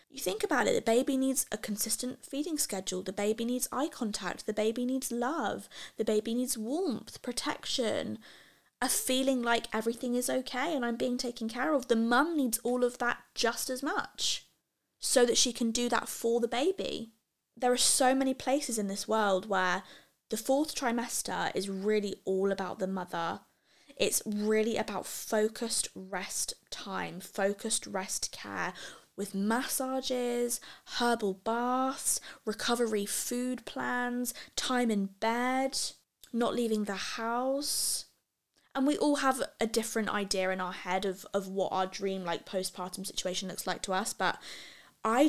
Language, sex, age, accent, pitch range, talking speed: English, female, 20-39, British, 205-255 Hz, 160 wpm